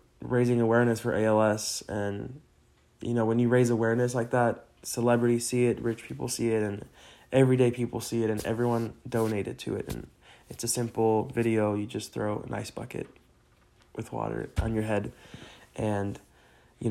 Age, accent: 20-39, American